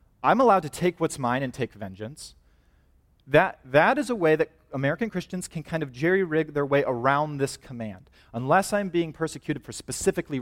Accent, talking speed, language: American, 185 wpm, English